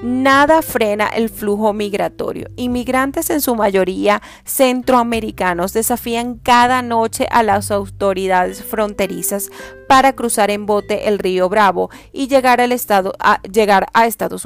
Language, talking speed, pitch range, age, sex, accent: Spanish, 135 wpm, 190-230 Hz, 30-49, female, Venezuelan